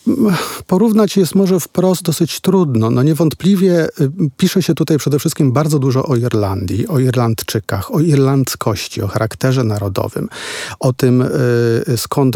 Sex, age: male, 40-59